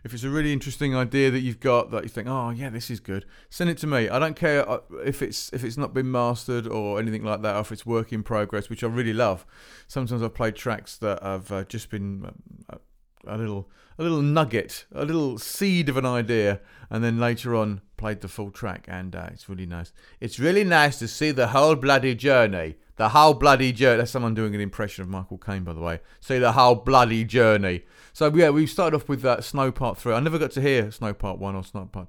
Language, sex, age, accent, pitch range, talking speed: English, male, 40-59, British, 100-135 Hz, 240 wpm